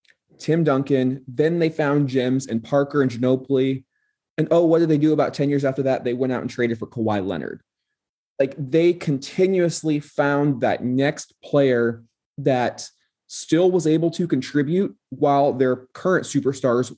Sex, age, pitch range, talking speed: male, 20-39, 115-145 Hz, 165 wpm